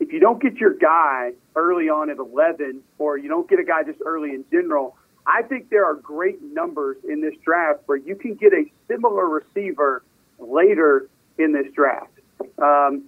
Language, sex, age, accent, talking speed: English, male, 40-59, American, 190 wpm